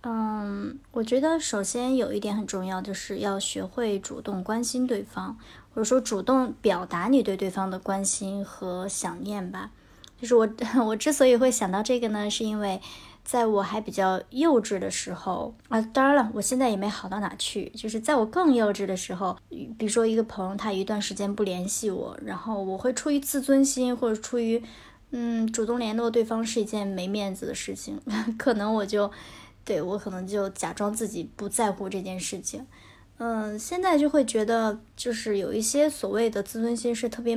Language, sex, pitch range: Chinese, male, 200-240 Hz